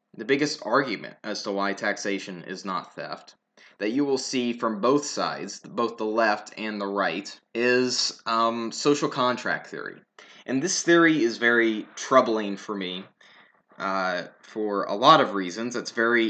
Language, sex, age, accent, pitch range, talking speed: English, male, 20-39, American, 105-125 Hz, 160 wpm